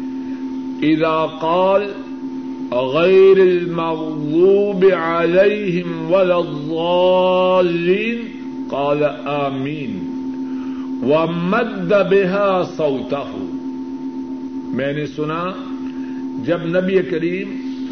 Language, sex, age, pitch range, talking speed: Urdu, male, 60-79, 170-270 Hz, 55 wpm